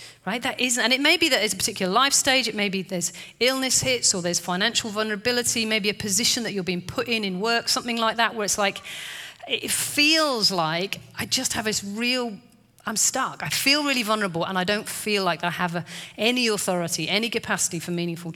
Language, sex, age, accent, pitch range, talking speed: English, female, 40-59, British, 175-225 Hz, 220 wpm